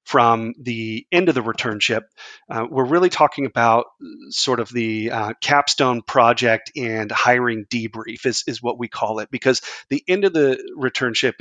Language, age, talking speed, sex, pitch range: English, 30-49, 170 wpm, male, 115-135 Hz